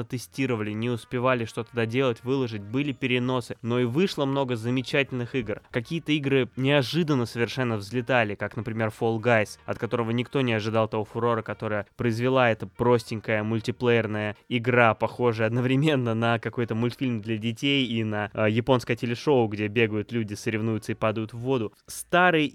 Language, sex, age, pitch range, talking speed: Russian, male, 20-39, 110-130 Hz, 150 wpm